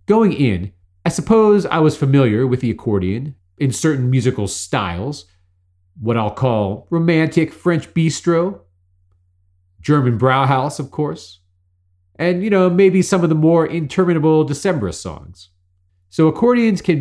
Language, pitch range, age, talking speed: English, 100-150 Hz, 40-59, 135 wpm